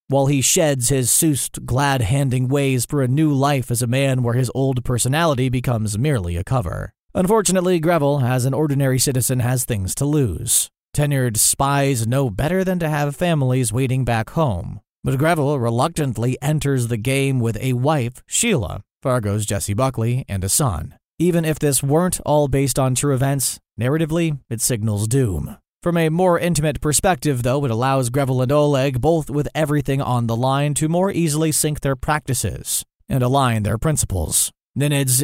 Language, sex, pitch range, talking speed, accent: English, male, 125-150 Hz, 170 wpm, American